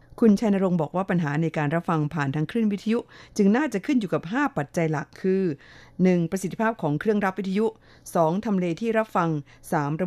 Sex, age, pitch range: female, 50-69, 150-185 Hz